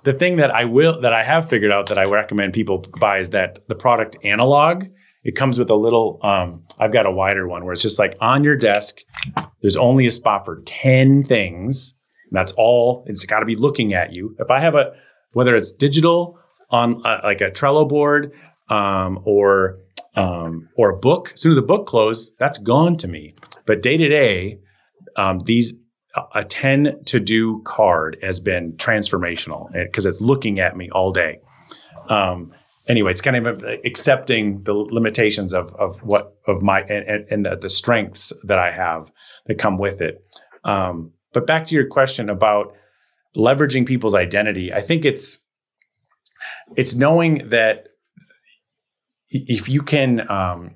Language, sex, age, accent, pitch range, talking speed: English, male, 30-49, American, 100-135 Hz, 175 wpm